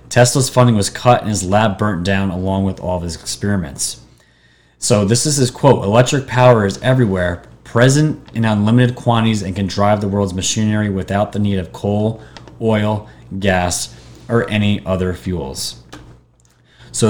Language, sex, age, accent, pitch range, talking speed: English, male, 30-49, American, 90-120 Hz, 160 wpm